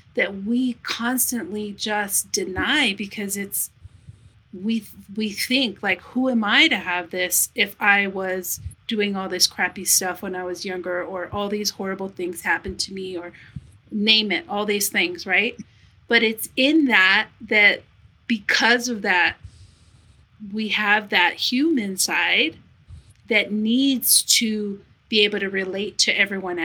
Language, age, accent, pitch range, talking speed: English, 30-49, American, 185-220 Hz, 150 wpm